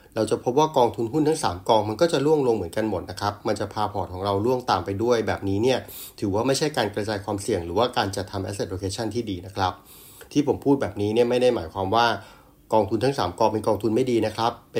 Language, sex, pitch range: Thai, male, 100-125 Hz